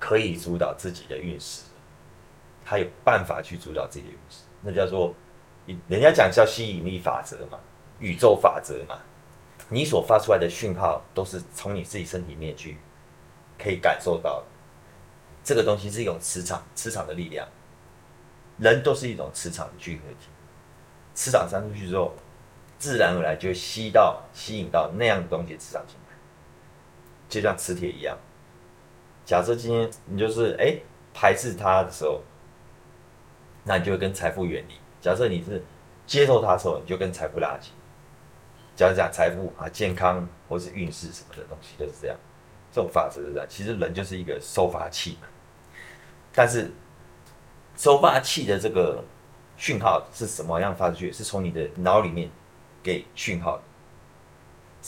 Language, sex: Chinese, male